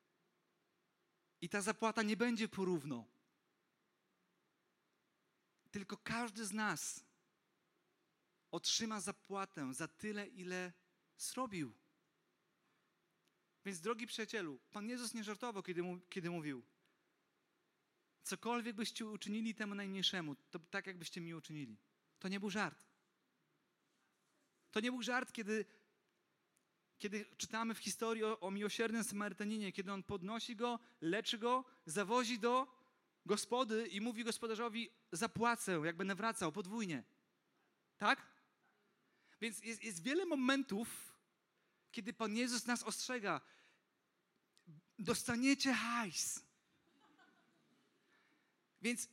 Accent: native